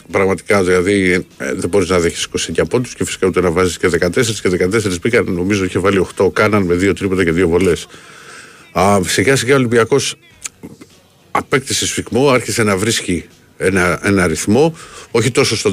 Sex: male